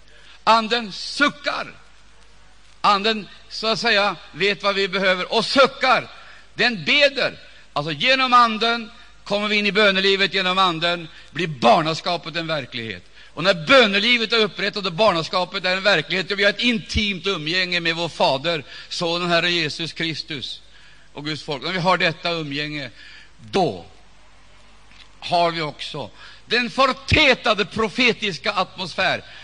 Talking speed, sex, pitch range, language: 140 wpm, male, 170-225 Hz, Swedish